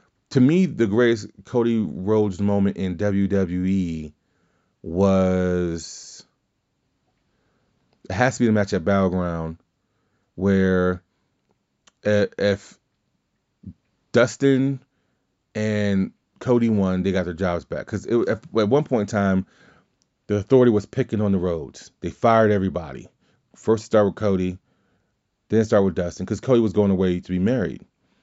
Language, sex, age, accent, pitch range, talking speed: English, male, 30-49, American, 90-105 Hz, 130 wpm